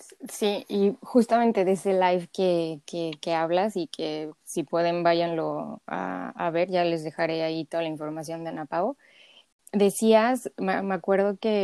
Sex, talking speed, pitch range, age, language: female, 170 wpm, 175-200 Hz, 20-39, Spanish